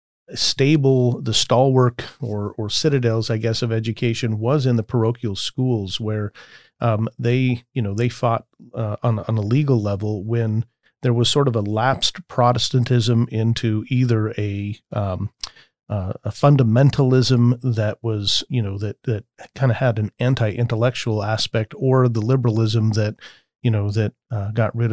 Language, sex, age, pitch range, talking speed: English, male, 40-59, 110-125 Hz, 155 wpm